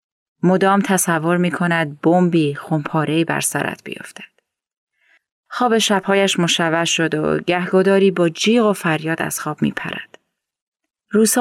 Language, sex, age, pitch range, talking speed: Persian, female, 30-49, 160-200 Hz, 120 wpm